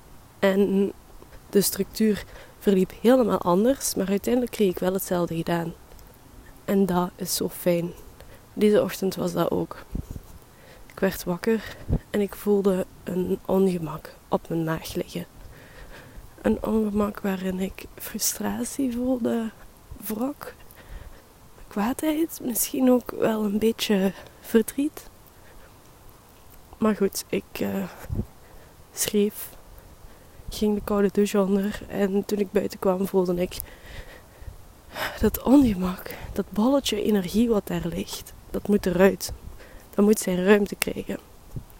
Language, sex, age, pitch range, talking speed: Dutch, female, 20-39, 175-210 Hz, 120 wpm